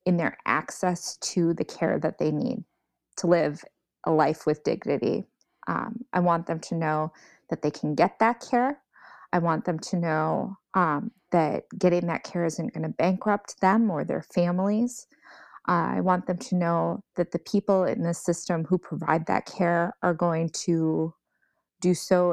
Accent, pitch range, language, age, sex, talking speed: American, 165-195 Hz, English, 20-39, female, 175 wpm